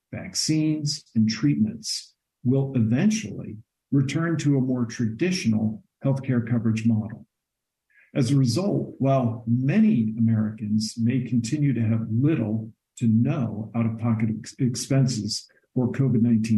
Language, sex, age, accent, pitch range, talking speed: English, male, 50-69, American, 110-135 Hz, 110 wpm